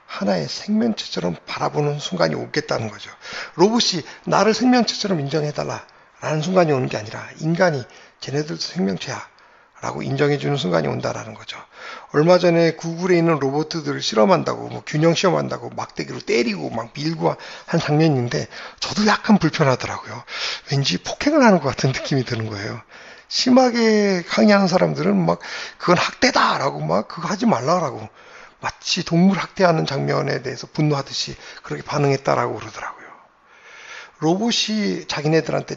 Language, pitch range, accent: Korean, 130-185 Hz, native